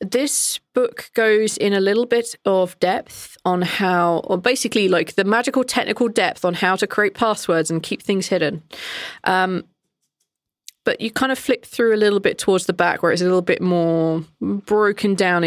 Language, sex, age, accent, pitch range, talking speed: English, female, 20-39, British, 170-205 Hz, 185 wpm